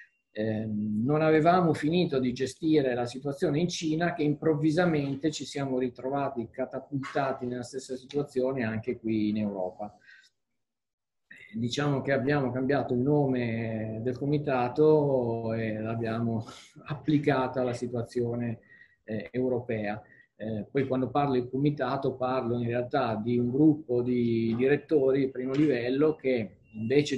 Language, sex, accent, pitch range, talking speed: Italian, male, native, 115-140 Hz, 125 wpm